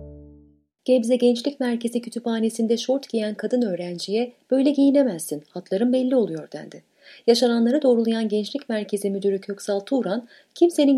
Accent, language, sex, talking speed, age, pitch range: native, Turkish, female, 120 wpm, 30-49, 175-260 Hz